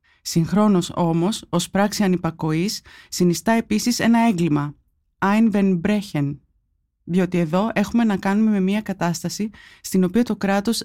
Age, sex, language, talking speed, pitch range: 20-39, female, Greek, 125 wpm, 175-220 Hz